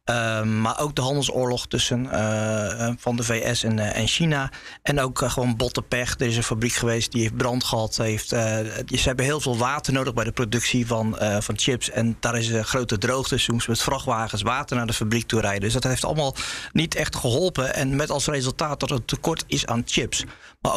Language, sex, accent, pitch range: Dutch, male, Dutch, 115-145 Hz